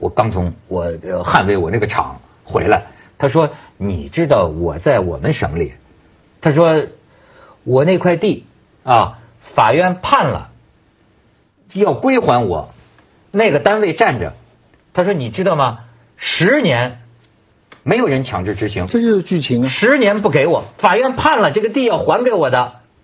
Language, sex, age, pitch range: Chinese, male, 50-69, 130-210 Hz